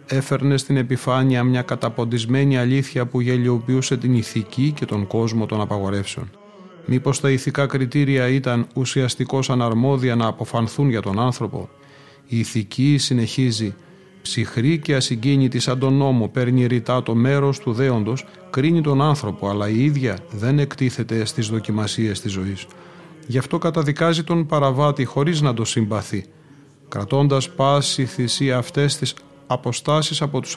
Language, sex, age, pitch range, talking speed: Greek, male, 30-49, 120-145 Hz, 140 wpm